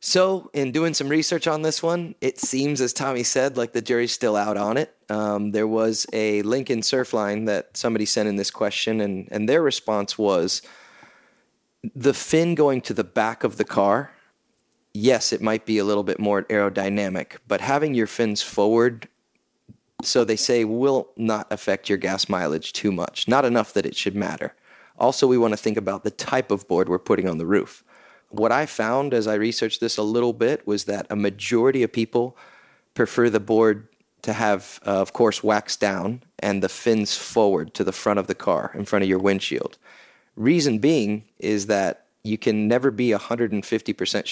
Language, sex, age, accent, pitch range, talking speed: English, male, 30-49, American, 105-120 Hz, 190 wpm